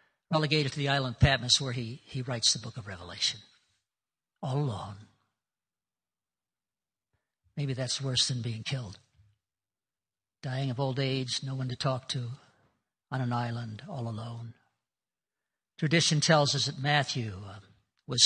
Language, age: English, 60-79